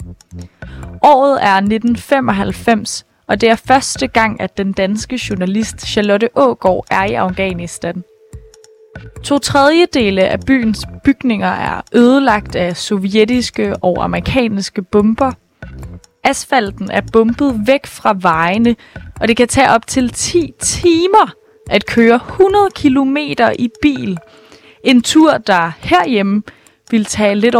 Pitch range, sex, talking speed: 195-255 Hz, female, 120 wpm